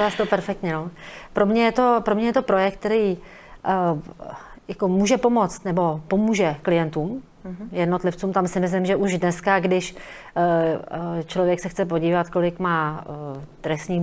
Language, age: Czech, 30-49